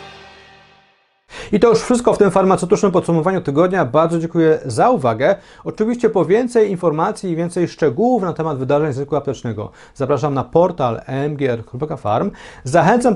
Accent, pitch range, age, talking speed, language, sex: native, 145-190 Hz, 40-59, 140 wpm, Polish, male